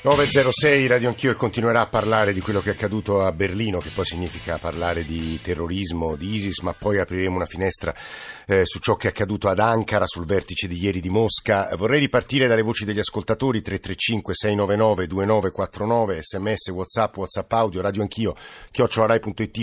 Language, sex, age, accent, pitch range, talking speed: Italian, male, 50-69, native, 100-130 Hz, 175 wpm